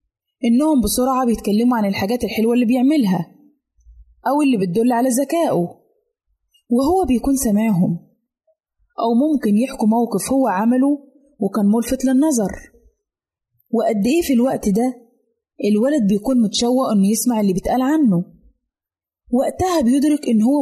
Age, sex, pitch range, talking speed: 20-39, female, 210-270 Hz, 120 wpm